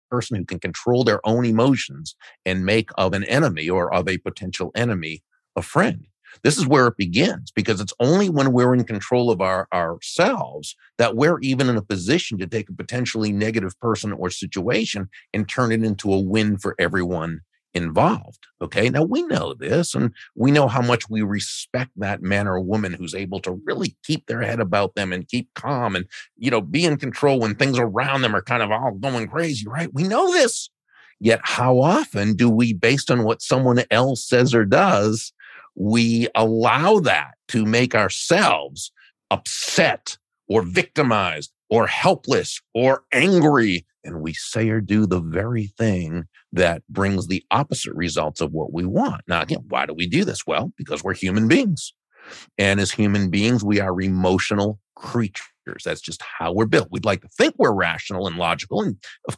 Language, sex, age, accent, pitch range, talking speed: English, male, 50-69, American, 100-125 Hz, 185 wpm